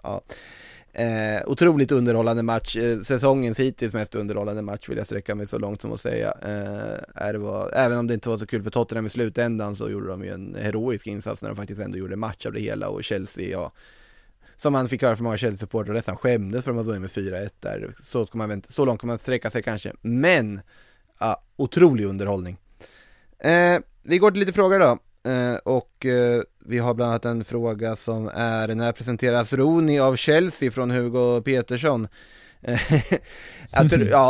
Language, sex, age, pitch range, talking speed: Swedish, male, 20-39, 110-130 Hz, 195 wpm